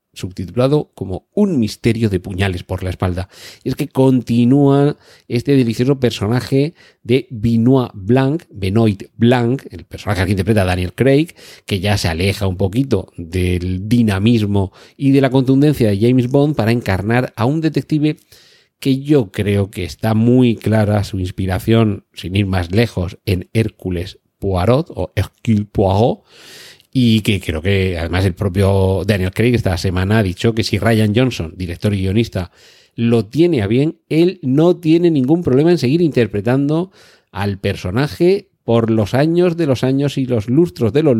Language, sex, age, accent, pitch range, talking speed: Spanish, male, 40-59, Spanish, 95-135 Hz, 160 wpm